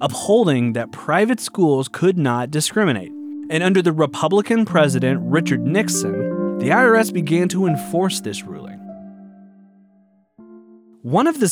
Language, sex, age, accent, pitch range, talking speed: English, male, 30-49, American, 120-175 Hz, 125 wpm